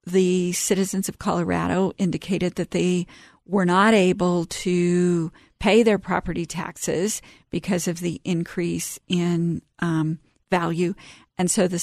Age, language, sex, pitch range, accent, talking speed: 50-69, English, female, 170-185 Hz, American, 125 wpm